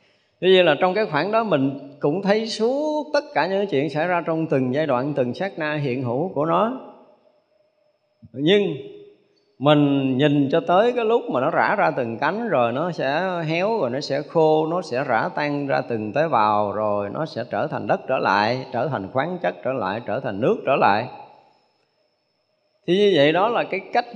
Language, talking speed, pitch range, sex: Vietnamese, 205 wpm, 130-190 Hz, male